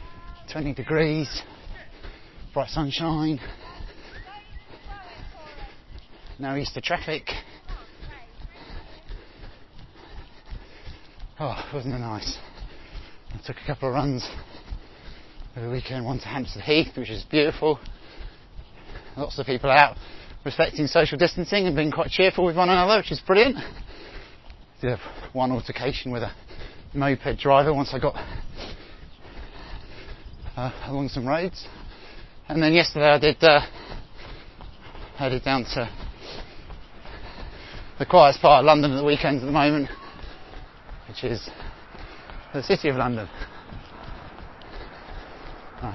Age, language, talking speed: 30-49, English, 110 wpm